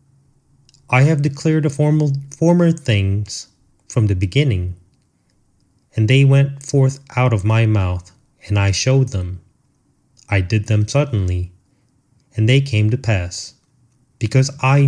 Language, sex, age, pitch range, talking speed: English, male, 30-49, 100-135 Hz, 130 wpm